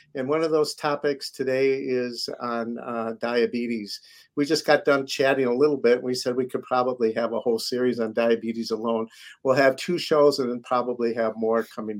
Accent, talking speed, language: American, 205 wpm, English